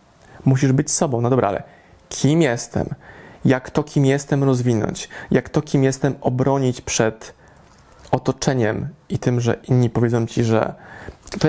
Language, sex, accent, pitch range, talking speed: Polish, male, native, 120-140 Hz, 145 wpm